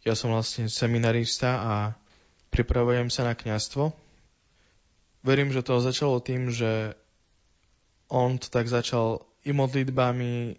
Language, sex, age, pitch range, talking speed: Slovak, male, 20-39, 115-130 Hz, 120 wpm